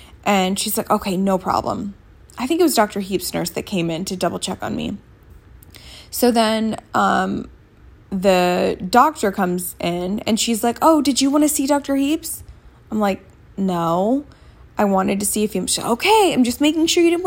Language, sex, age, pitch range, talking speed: English, female, 10-29, 200-265 Hz, 190 wpm